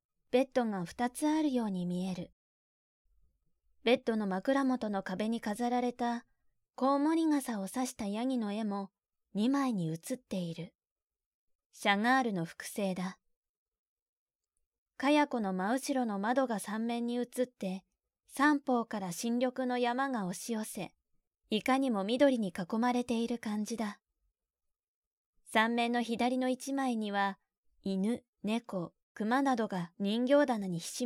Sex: female